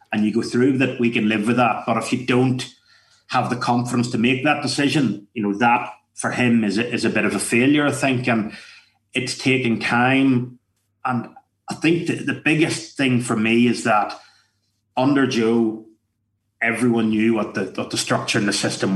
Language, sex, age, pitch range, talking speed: English, male, 30-49, 115-130 Hz, 195 wpm